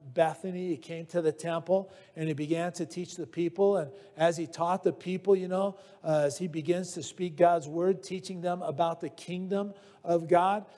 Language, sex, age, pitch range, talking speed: English, male, 50-69, 165-210 Hz, 200 wpm